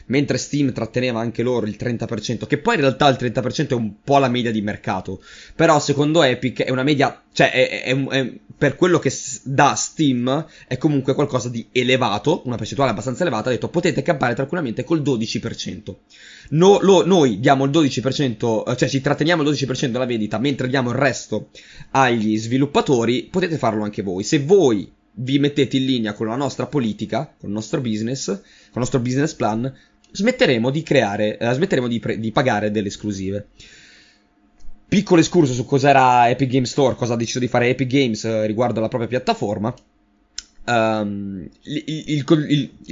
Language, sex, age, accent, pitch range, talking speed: Italian, male, 20-39, native, 115-140 Hz, 175 wpm